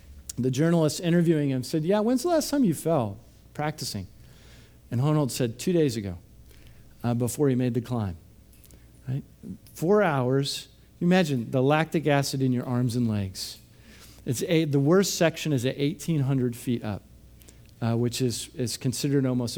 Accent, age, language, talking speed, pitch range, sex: American, 50-69, English, 160 wpm, 110-150 Hz, male